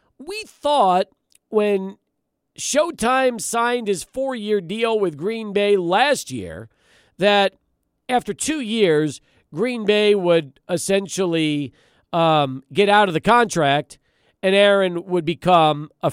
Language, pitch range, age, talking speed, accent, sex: English, 170-225 Hz, 40-59, 120 wpm, American, male